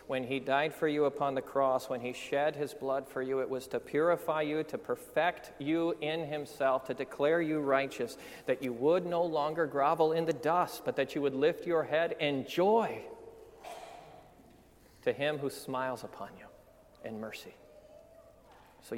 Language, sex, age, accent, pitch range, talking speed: English, male, 40-59, American, 130-160 Hz, 175 wpm